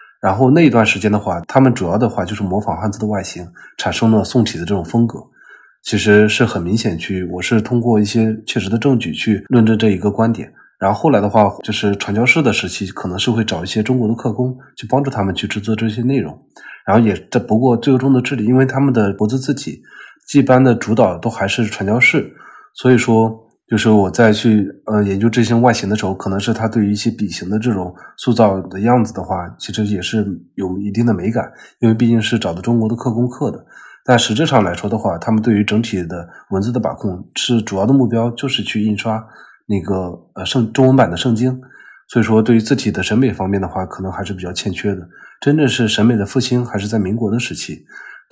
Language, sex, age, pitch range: Chinese, male, 20-39, 100-120 Hz